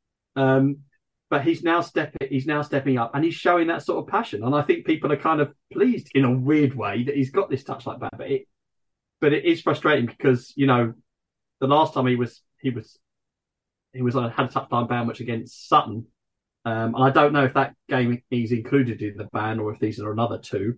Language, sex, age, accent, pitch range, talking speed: English, male, 30-49, British, 110-140 Hz, 235 wpm